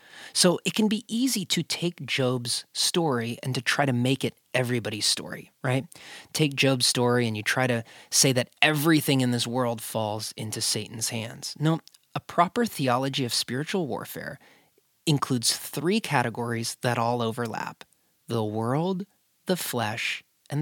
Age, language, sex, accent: 30-49, English, male, American